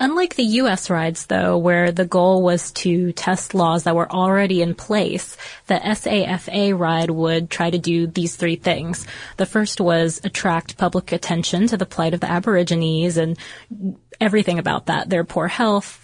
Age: 20-39